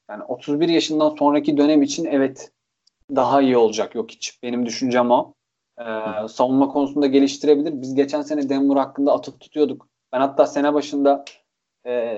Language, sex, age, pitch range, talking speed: Turkish, male, 30-49, 120-145 Hz, 155 wpm